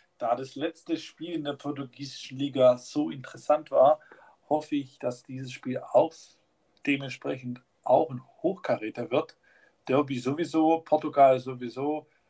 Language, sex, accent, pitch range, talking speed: German, male, German, 125-150 Hz, 125 wpm